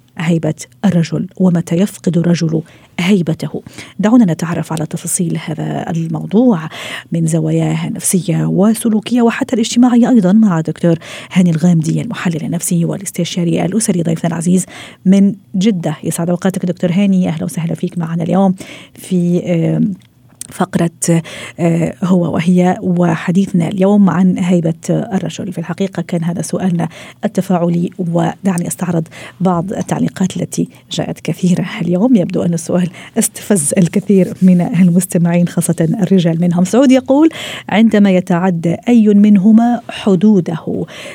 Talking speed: 115 wpm